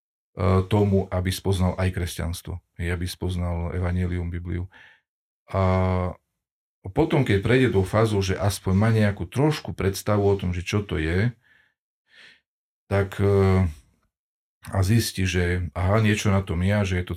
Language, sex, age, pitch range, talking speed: Slovak, male, 40-59, 90-105 Hz, 140 wpm